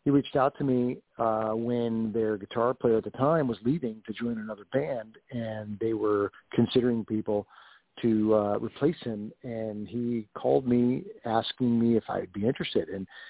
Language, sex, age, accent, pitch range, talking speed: English, male, 50-69, American, 105-120 Hz, 175 wpm